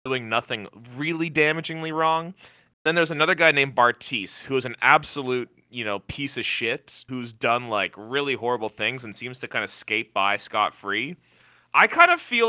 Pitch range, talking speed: 110-150 Hz, 185 wpm